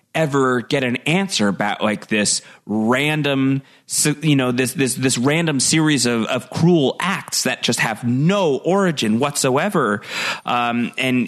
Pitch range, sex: 115-155 Hz, male